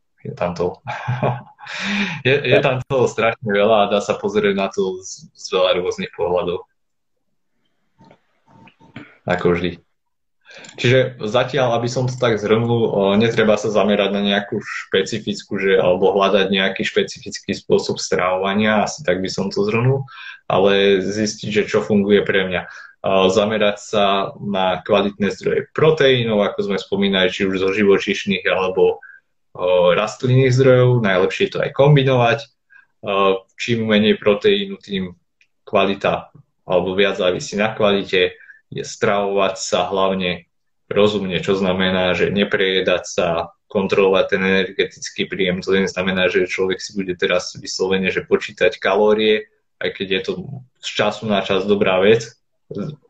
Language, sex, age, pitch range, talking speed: Slovak, male, 20-39, 95-130 Hz, 135 wpm